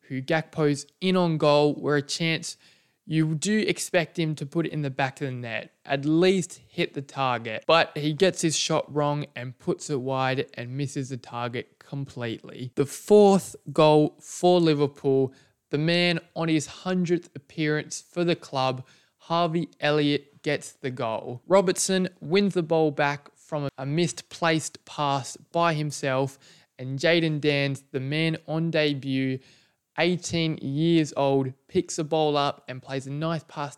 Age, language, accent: 20-39, English, Australian